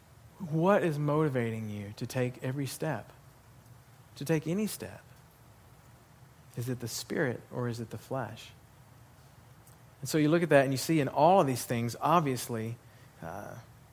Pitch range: 120-145 Hz